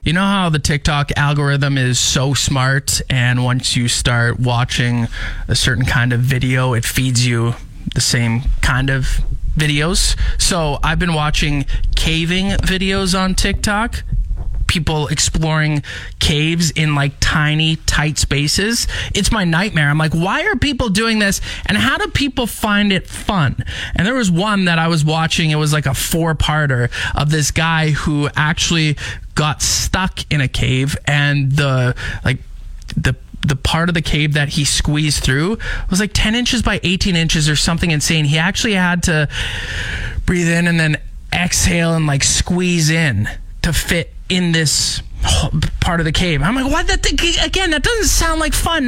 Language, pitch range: English, 130-190 Hz